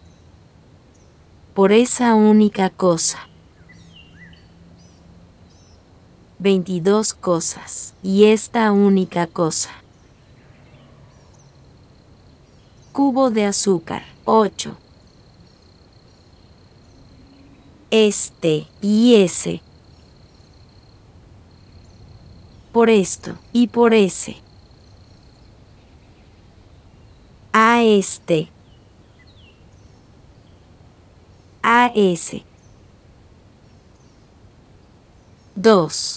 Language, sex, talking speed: English, female, 45 wpm